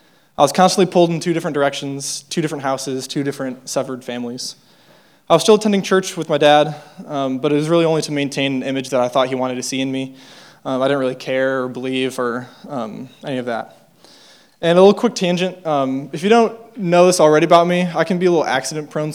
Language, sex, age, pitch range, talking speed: English, male, 20-39, 135-160 Hz, 235 wpm